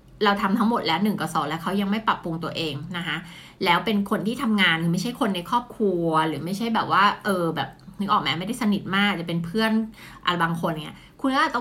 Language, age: Thai, 20-39